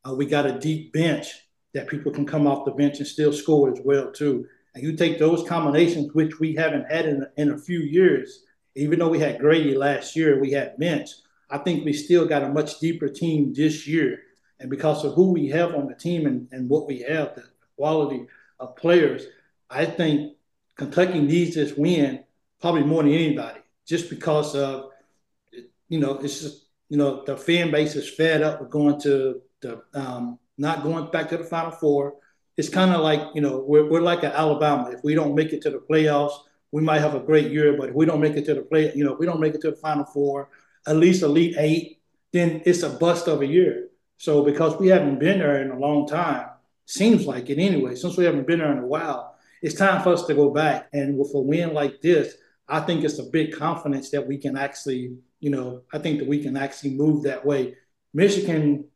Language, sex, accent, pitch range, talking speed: English, male, American, 140-165 Hz, 225 wpm